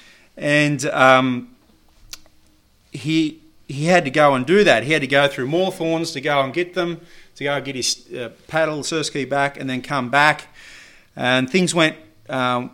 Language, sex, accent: English, male, Australian